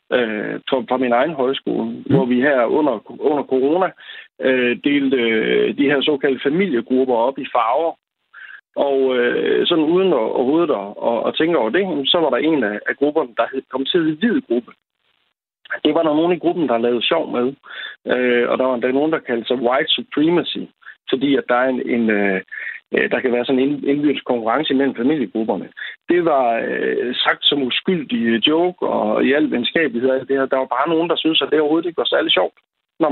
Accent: native